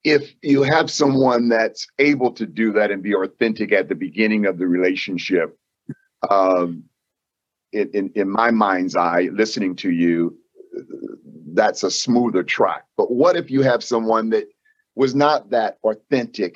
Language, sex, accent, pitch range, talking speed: English, male, American, 105-140 Hz, 155 wpm